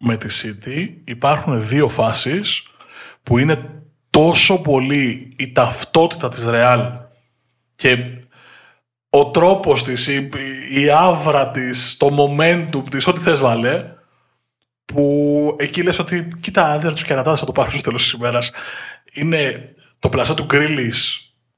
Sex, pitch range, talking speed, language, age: male, 125-150 Hz, 130 wpm, Greek, 20-39